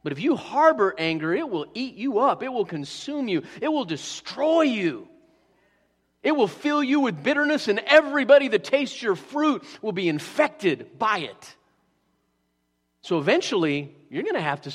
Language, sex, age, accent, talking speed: English, male, 40-59, American, 170 wpm